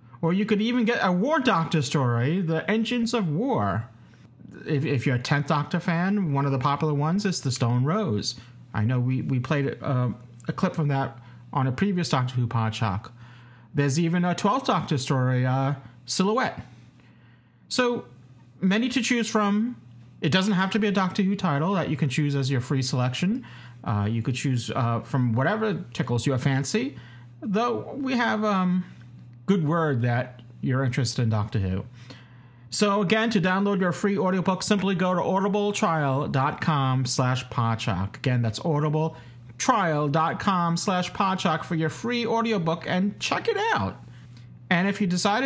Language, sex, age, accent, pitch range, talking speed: English, male, 40-59, American, 125-195 Hz, 165 wpm